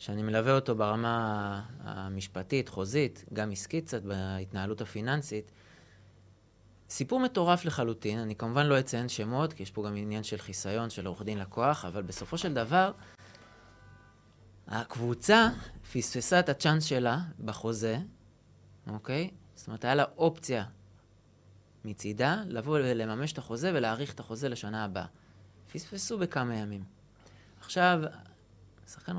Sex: male